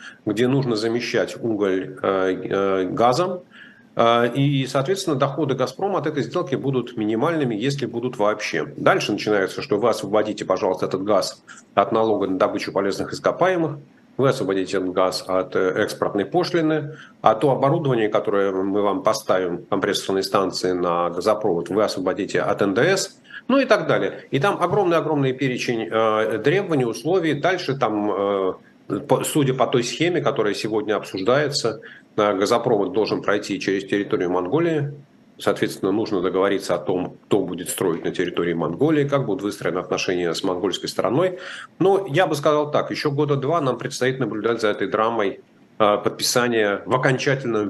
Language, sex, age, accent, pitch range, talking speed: Russian, male, 40-59, native, 100-155 Hz, 145 wpm